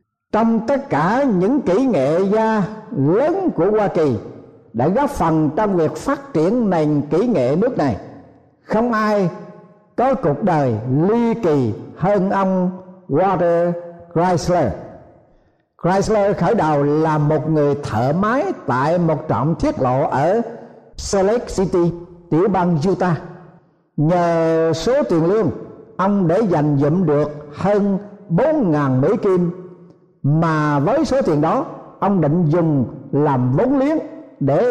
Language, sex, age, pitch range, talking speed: Vietnamese, male, 60-79, 150-210 Hz, 135 wpm